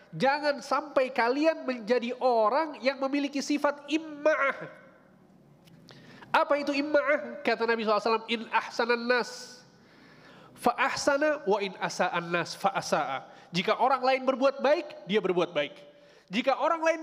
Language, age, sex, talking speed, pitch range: Indonesian, 30-49, male, 125 wpm, 180-265 Hz